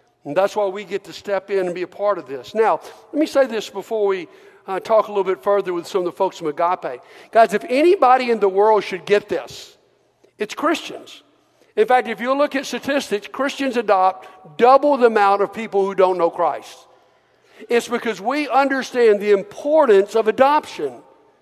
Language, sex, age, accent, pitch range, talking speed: English, male, 60-79, American, 200-270 Hz, 200 wpm